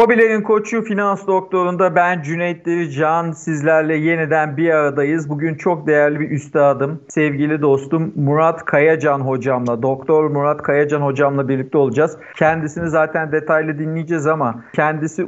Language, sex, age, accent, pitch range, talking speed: Turkish, male, 50-69, native, 140-170 Hz, 130 wpm